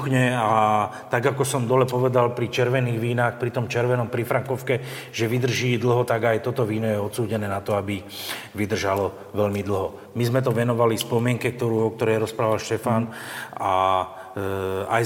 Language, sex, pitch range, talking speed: Slovak, male, 105-120 Hz, 165 wpm